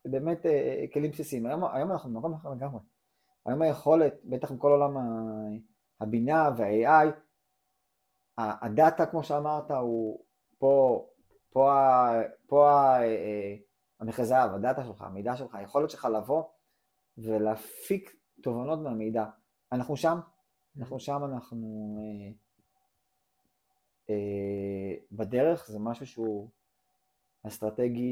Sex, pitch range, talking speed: male, 110-140 Hz, 90 wpm